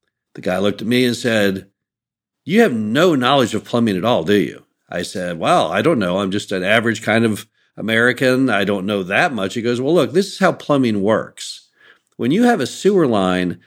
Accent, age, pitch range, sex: American, 50-69, 110-145 Hz, male